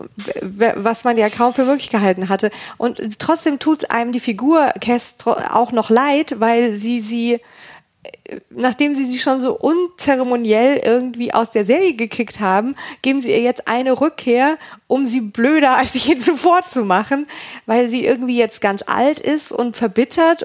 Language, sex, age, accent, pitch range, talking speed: German, female, 40-59, German, 230-275 Hz, 160 wpm